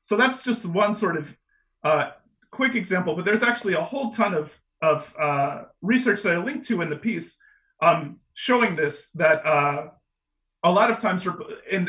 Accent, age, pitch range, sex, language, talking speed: American, 30-49, 160-220 Hz, male, English, 180 wpm